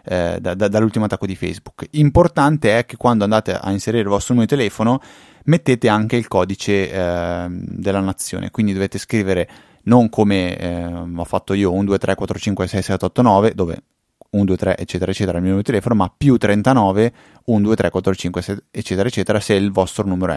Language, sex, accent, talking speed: Italian, male, native, 160 wpm